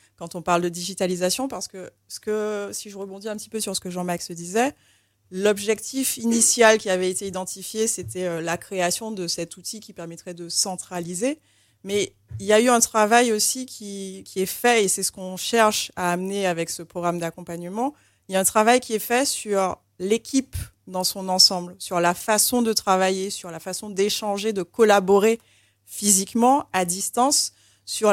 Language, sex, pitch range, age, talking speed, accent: French, female, 175-215 Hz, 20-39, 185 wpm, French